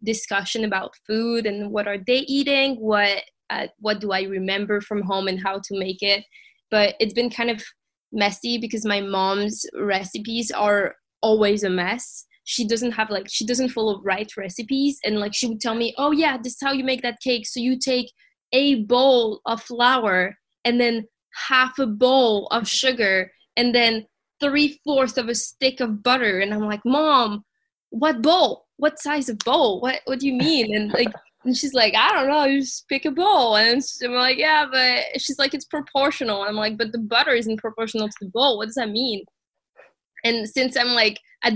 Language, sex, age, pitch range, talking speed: English, female, 20-39, 205-255 Hz, 200 wpm